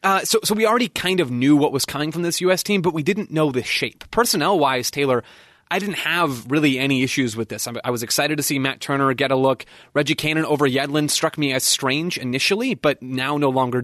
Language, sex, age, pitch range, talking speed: English, male, 30-49, 125-160 Hz, 235 wpm